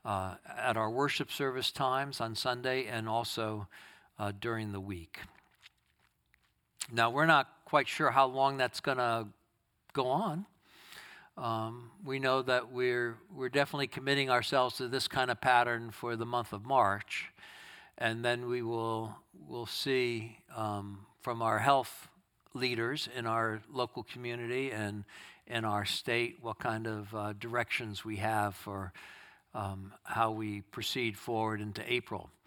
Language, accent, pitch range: English, American, 110-140 Hz